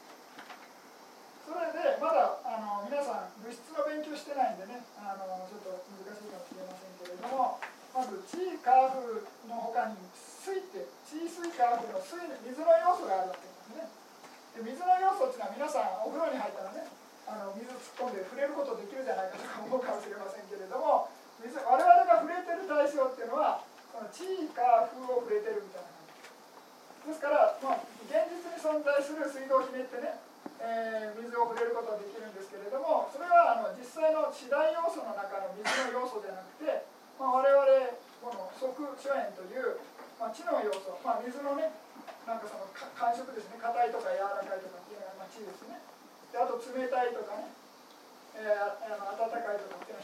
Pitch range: 215-310 Hz